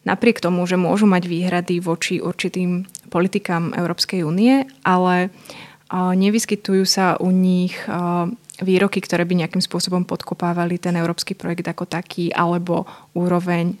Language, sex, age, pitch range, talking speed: Slovak, female, 20-39, 175-195 Hz, 125 wpm